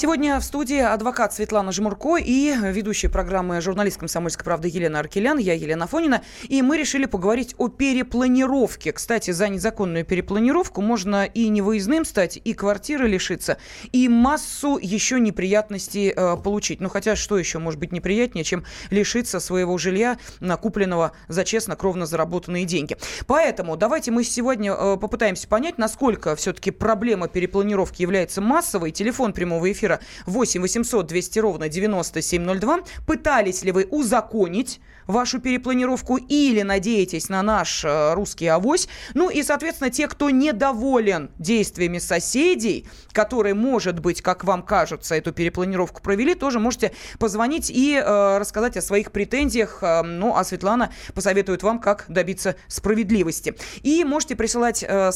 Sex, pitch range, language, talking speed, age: female, 185-245 Hz, Russian, 140 wpm, 20-39